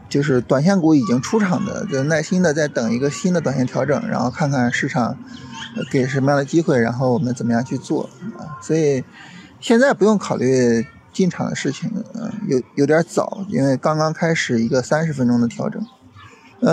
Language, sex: Chinese, male